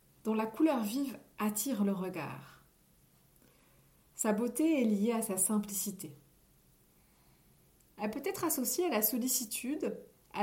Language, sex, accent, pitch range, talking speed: French, female, French, 200-255 Hz, 125 wpm